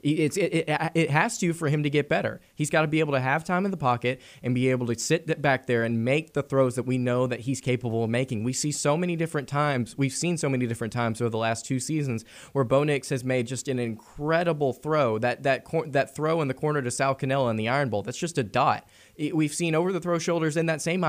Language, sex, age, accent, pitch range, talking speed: English, male, 20-39, American, 125-155 Hz, 275 wpm